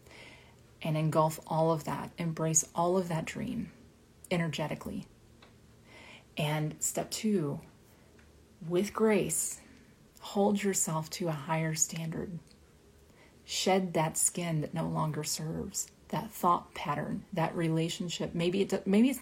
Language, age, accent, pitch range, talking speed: English, 30-49, American, 155-195 Hz, 120 wpm